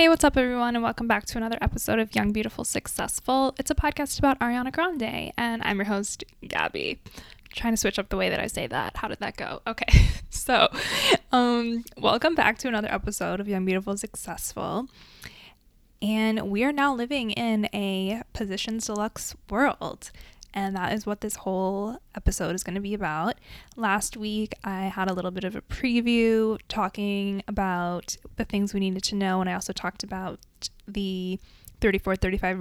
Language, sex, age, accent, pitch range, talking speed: English, female, 10-29, American, 190-225 Hz, 180 wpm